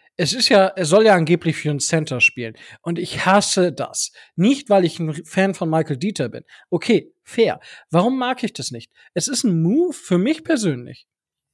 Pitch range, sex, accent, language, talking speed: 160-220 Hz, male, German, German, 200 wpm